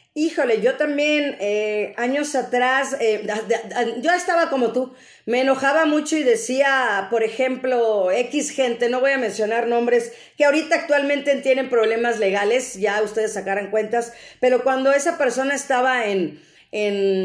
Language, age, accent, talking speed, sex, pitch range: Spanish, 40-59, Mexican, 145 wpm, female, 220-275 Hz